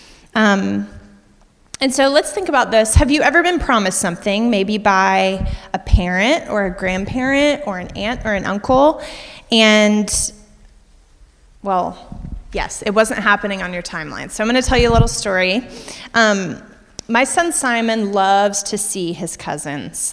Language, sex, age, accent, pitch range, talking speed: English, female, 30-49, American, 190-265 Hz, 160 wpm